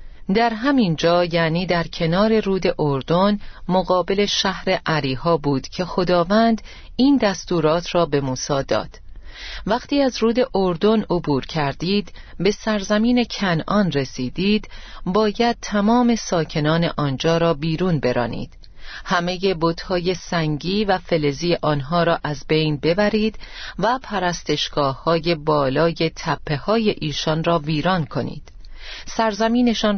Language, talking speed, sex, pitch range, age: Persian, 115 wpm, female, 160-210 Hz, 40-59